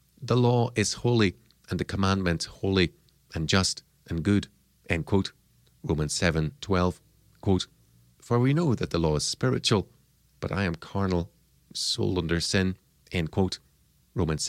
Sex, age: male, 40-59